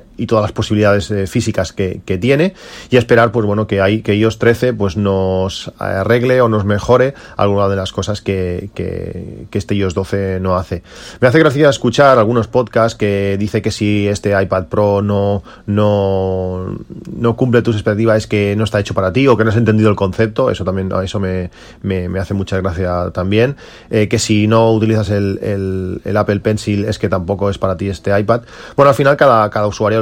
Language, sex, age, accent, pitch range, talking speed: Spanish, male, 30-49, Spanish, 95-110 Hz, 205 wpm